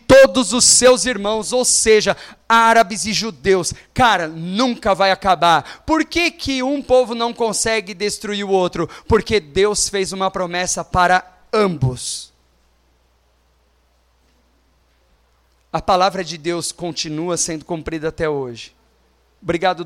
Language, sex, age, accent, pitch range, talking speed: Portuguese, male, 30-49, Brazilian, 160-245 Hz, 120 wpm